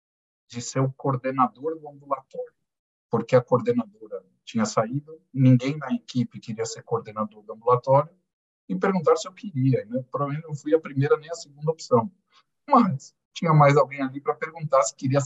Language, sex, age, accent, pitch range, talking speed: Portuguese, male, 50-69, Brazilian, 120-160 Hz, 170 wpm